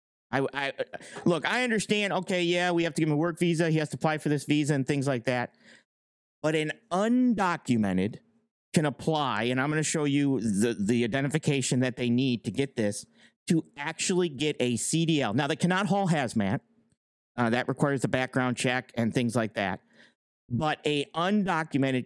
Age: 50-69